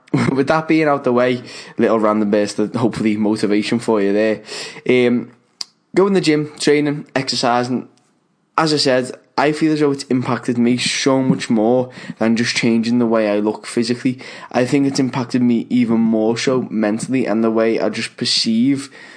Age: 10-29